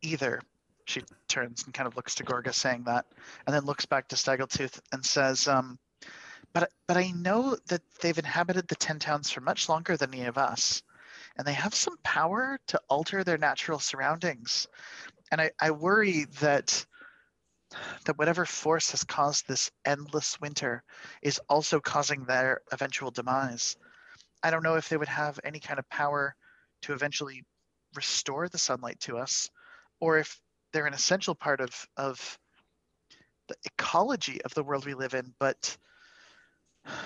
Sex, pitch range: male, 130-160 Hz